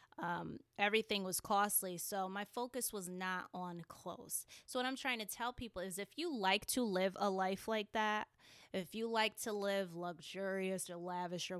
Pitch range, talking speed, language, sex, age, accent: 185-230 Hz, 190 wpm, English, female, 20-39, American